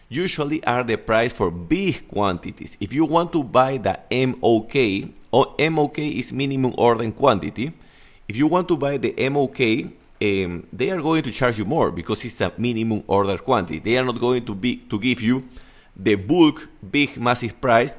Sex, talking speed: male, 190 wpm